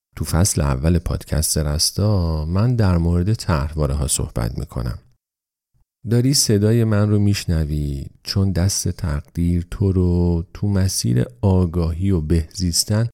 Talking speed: 120 wpm